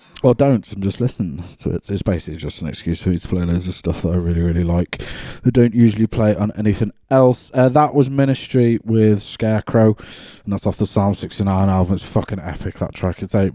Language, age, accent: English, 20-39, British